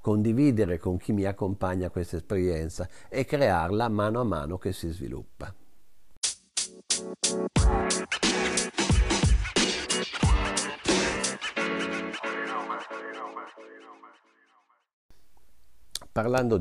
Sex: male